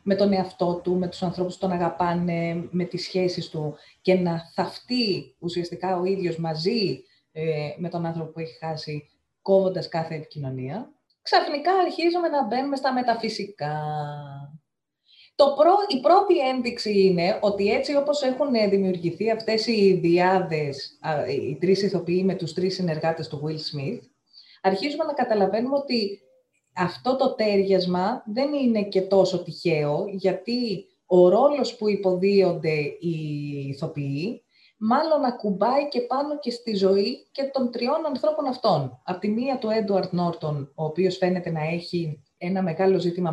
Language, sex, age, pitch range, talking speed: Greek, female, 30-49, 160-215 Hz, 145 wpm